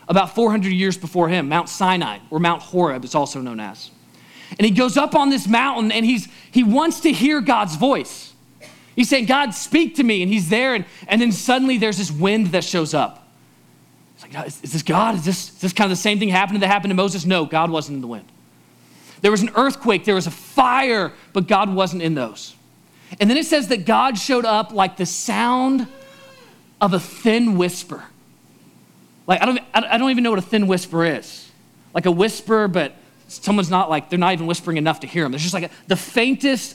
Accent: American